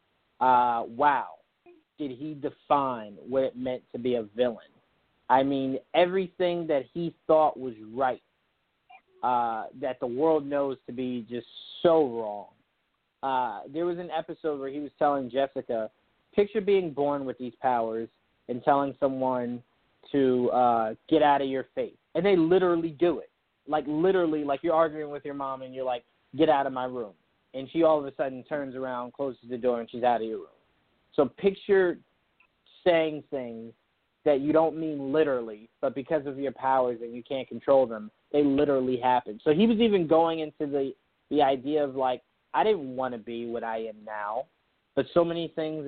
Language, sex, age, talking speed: English, male, 30-49, 185 wpm